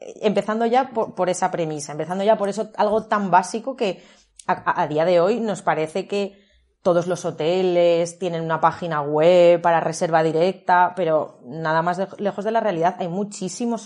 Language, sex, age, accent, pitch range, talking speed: Spanish, female, 30-49, Spanish, 165-205 Hz, 180 wpm